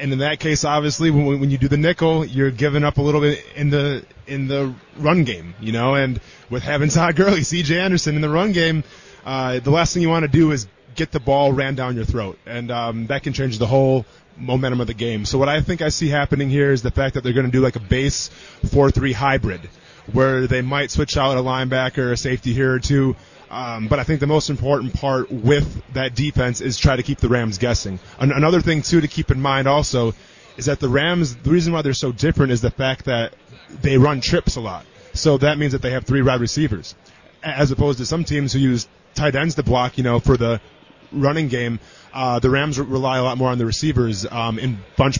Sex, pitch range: male, 125-145 Hz